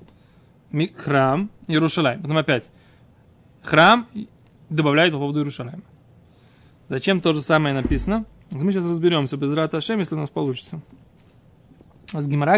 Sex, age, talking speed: male, 20-39, 115 wpm